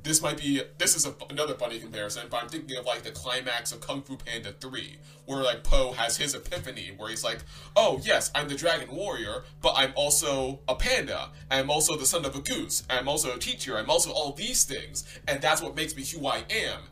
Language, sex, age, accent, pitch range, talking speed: English, male, 20-39, American, 120-150 Hz, 235 wpm